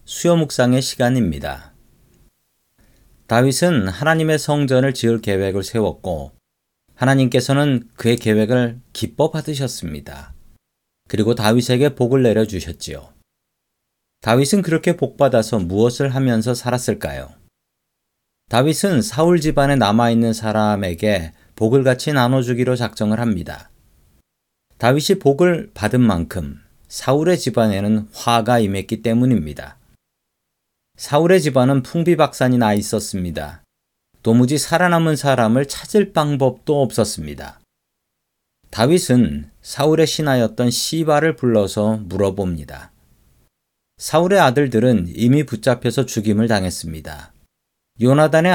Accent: native